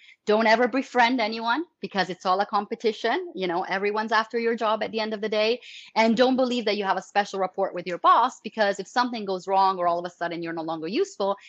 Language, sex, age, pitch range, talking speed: English, female, 30-49, 180-230 Hz, 245 wpm